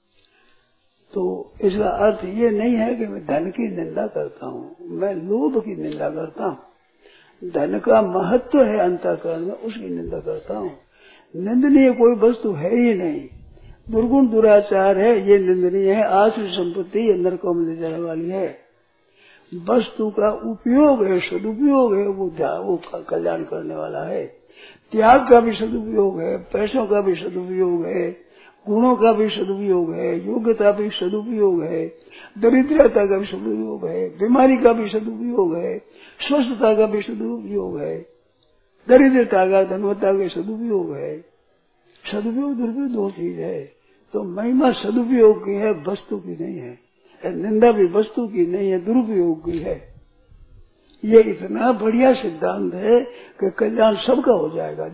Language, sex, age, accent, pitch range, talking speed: Hindi, male, 60-79, native, 190-245 Hz, 145 wpm